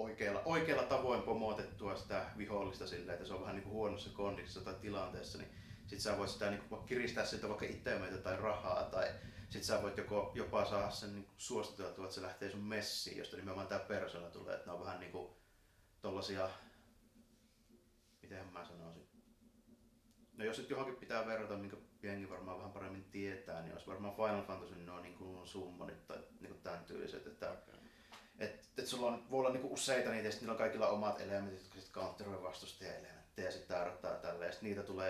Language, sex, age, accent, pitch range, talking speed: Finnish, male, 30-49, native, 90-105 Hz, 190 wpm